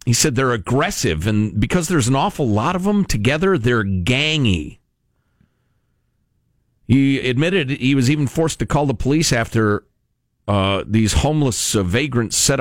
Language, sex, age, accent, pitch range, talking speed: English, male, 50-69, American, 110-165 Hz, 150 wpm